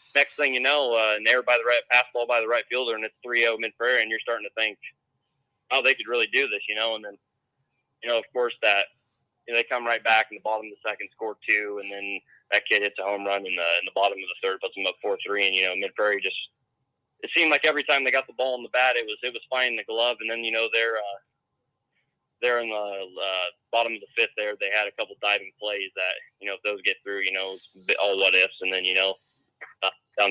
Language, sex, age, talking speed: English, male, 20-39, 280 wpm